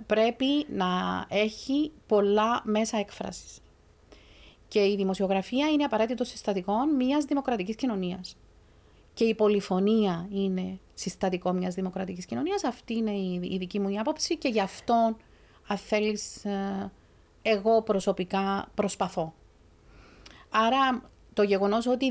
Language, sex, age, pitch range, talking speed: Greek, female, 40-59, 190-235 Hz, 110 wpm